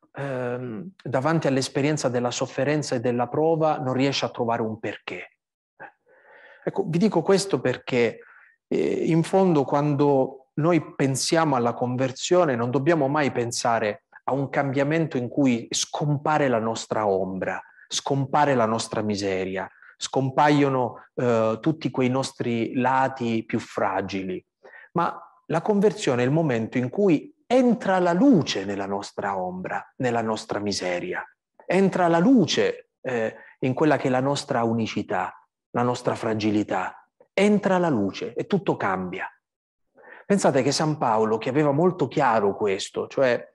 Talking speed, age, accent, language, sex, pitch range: 135 wpm, 30-49, native, Italian, male, 125-170 Hz